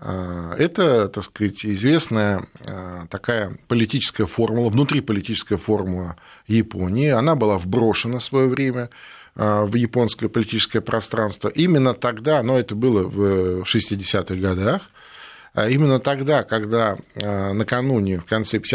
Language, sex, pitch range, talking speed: Russian, male, 100-125 Hz, 110 wpm